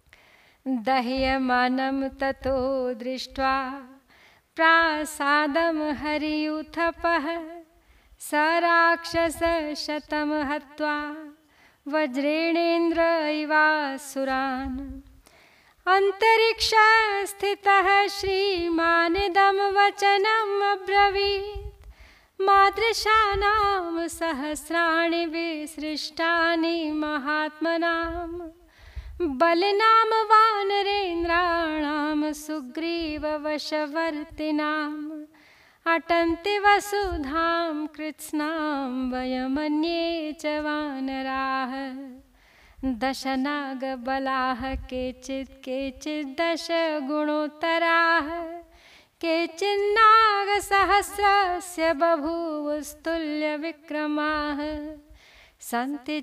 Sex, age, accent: female, 30-49, native